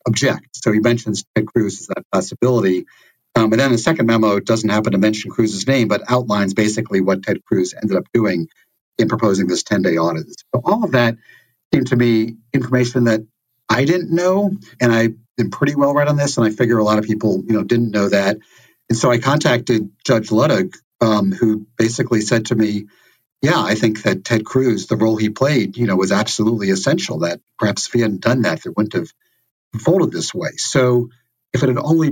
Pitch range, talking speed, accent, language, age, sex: 110-125 Hz, 215 wpm, American, English, 60-79, male